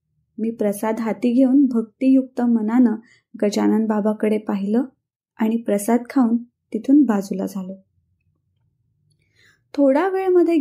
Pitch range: 225-300 Hz